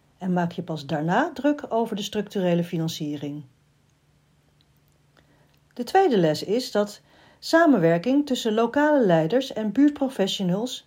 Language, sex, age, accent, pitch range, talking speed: Dutch, female, 40-59, Dutch, 160-250 Hz, 115 wpm